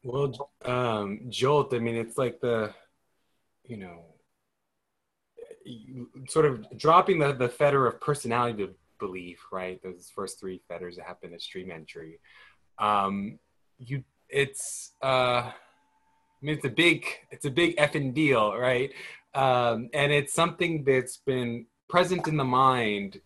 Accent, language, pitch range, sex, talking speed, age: American, English, 110-150 Hz, male, 135 wpm, 20-39